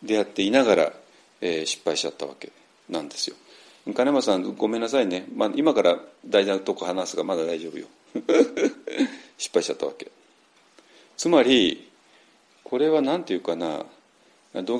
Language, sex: Japanese, male